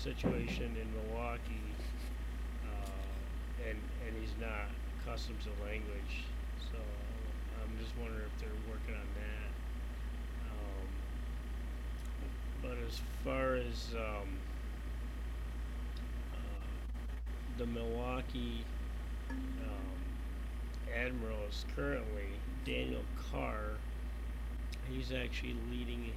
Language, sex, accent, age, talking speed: English, male, American, 30-49, 85 wpm